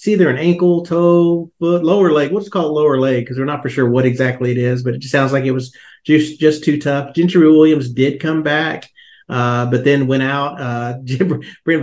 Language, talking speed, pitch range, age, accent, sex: English, 235 wpm, 125-155 Hz, 40-59, American, male